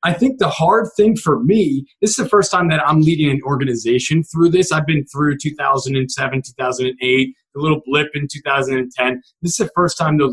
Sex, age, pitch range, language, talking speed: male, 20-39, 130-175 Hz, English, 205 wpm